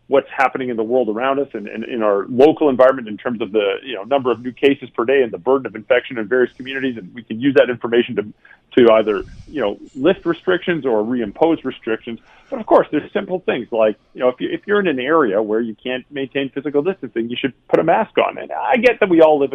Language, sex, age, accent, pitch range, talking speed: English, male, 40-59, American, 125-170 Hz, 260 wpm